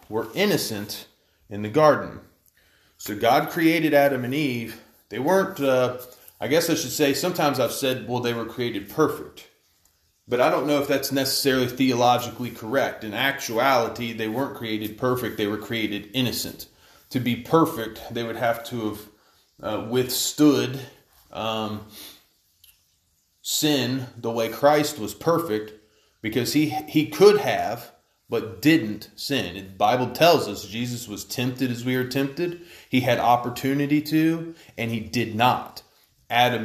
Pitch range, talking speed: 110-140 Hz, 150 wpm